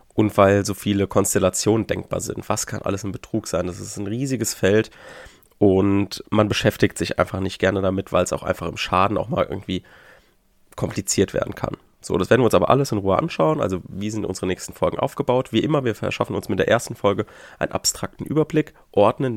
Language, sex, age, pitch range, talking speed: German, male, 30-49, 95-115 Hz, 210 wpm